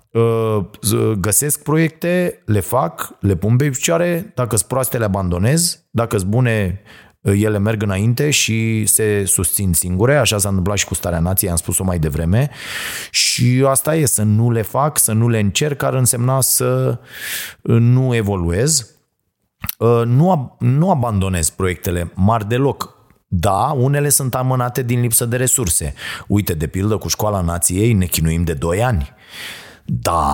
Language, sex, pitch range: Romanian, male, 95-125 Hz